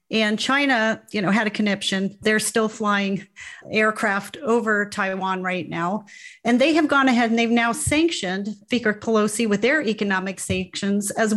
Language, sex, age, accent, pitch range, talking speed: English, female, 40-59, American, 195-235 Hz, 165 wpm